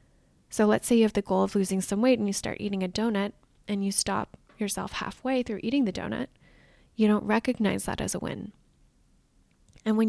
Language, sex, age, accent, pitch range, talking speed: English, female, 10-29, American, 195-230 Hz, 210 wpm